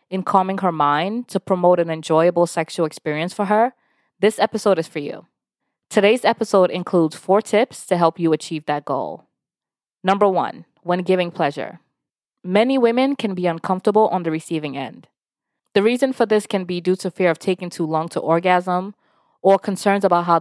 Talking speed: 180 wpm